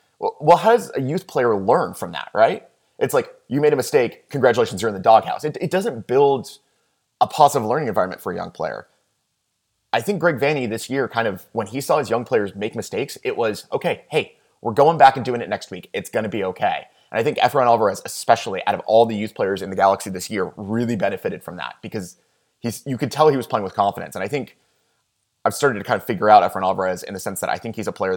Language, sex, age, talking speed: English, male, 20-39, 250 wpm